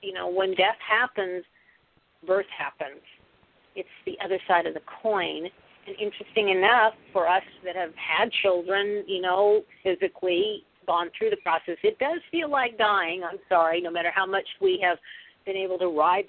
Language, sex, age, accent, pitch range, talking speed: English, female, 50-69, American, 180-215 Hz, 175 wpm